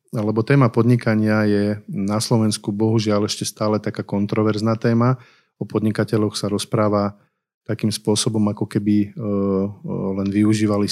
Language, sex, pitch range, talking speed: Slovak, male, 105-115 Hz, 120 wpm